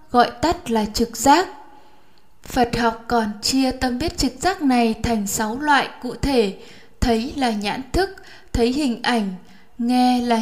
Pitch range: 230-285 Hz